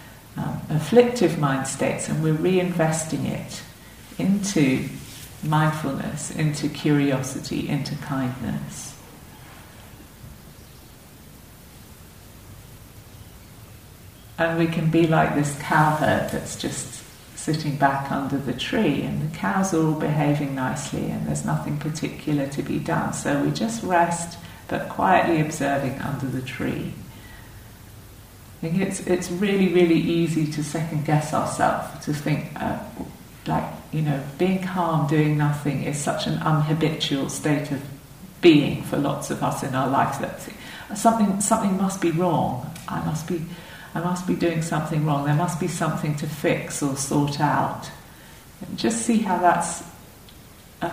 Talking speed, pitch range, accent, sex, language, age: 140 wpm, 140-170 Hz, British, female, English, 50-69